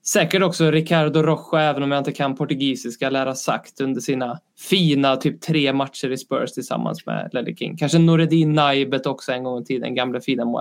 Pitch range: 140-160 Hz